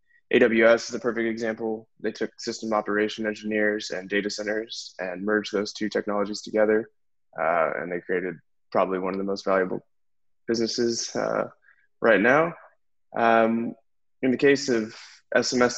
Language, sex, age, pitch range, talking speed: English, male, 20-39, 105-115 Hz, 150 wpm